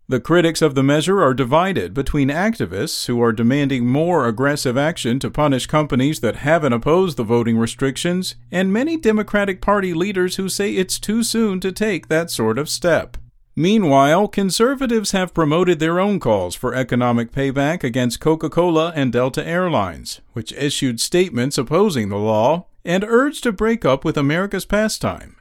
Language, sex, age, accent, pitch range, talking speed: English, male, 50-69, American, 130-195 Hz, 165 wpm